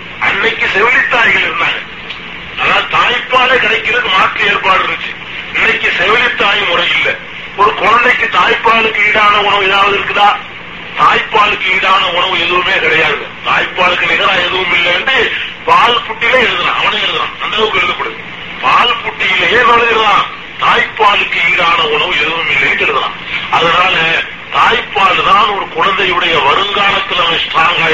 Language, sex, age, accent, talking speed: Tamil, male, 40-59, native, 105 wpm